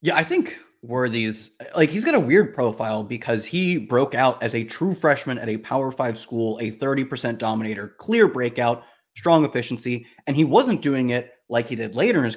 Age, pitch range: 30-49, 120-160 Hz